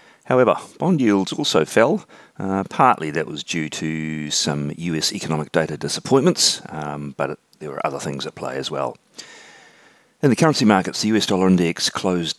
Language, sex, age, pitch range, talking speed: English, male, 40-59, 75-100 Hz, 170 wpm